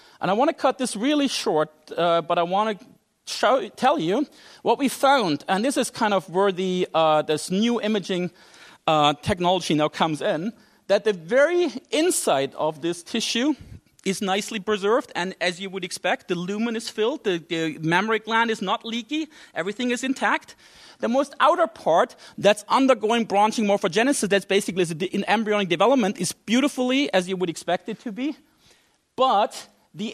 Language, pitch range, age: English, 180-245 Hz, 40-59